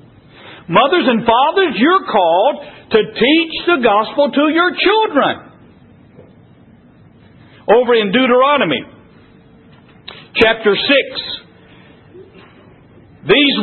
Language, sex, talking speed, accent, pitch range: English, male, 80 wpm, American, 220-295 Hz